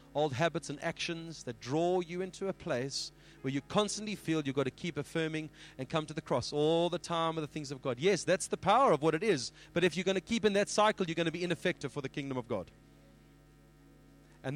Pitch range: 140-175 Hz